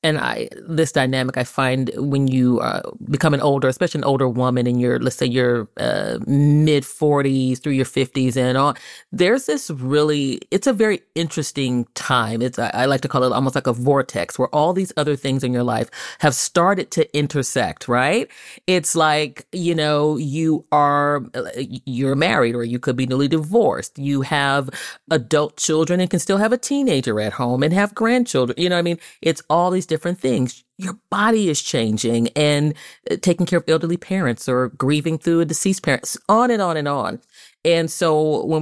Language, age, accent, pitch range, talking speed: English, 30-49, American, 130-160 Hz, 190 wpm